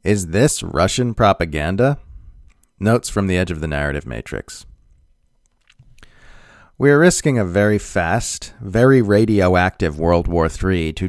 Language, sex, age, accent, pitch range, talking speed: English, male, 40-59, American, 85-110 Hz, 130 wpm